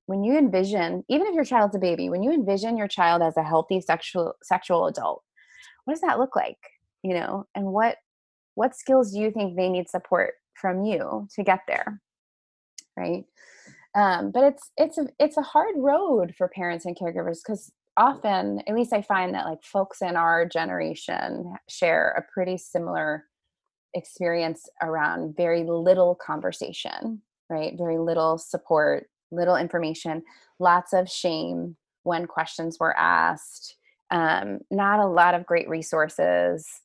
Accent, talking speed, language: American, 160 wpm, English